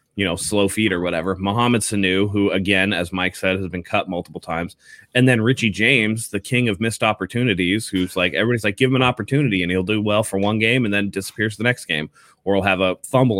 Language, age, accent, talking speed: English, 20-39, American, 235 wpm